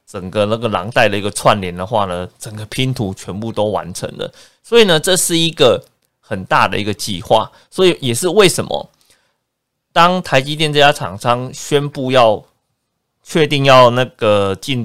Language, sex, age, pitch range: Chinese, male, 20-39, 105-140 Hz